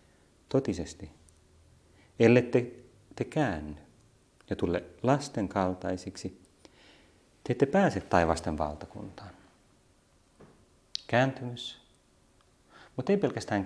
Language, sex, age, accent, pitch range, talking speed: Finnish, male, 30-49, native, 90-105 Hz, 75 wpm